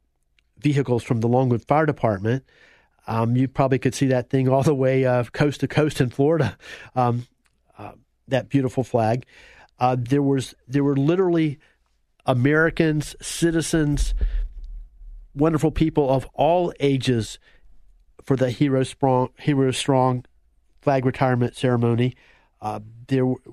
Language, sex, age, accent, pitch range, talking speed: English, male, 40-59, American, 125-145 Hz, 130 wpm